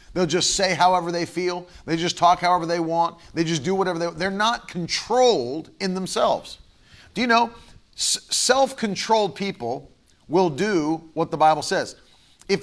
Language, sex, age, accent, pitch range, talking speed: English, male, 40-59, American, 140-195 Hz, 165 wpm